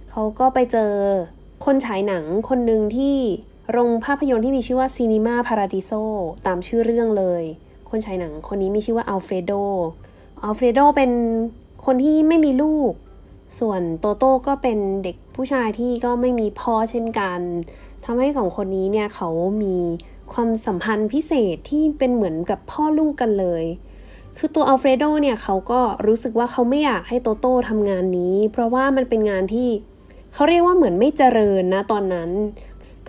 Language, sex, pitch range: Thai, female, 200-255 Hz